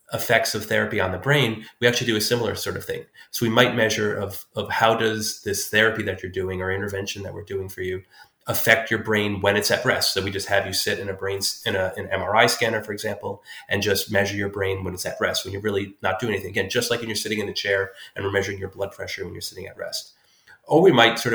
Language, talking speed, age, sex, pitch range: English, 265 wpm, 30-49, male, 95-110 Hz